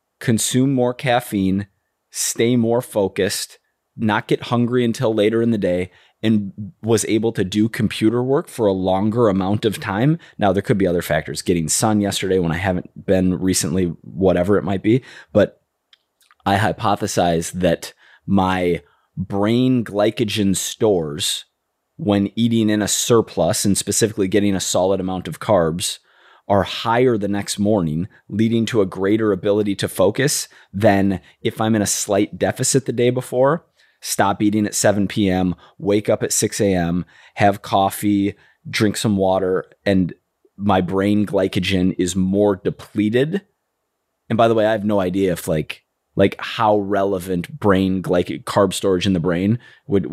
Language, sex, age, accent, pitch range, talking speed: English, male, 20-39, American, 95-110 Hz, 155 wpm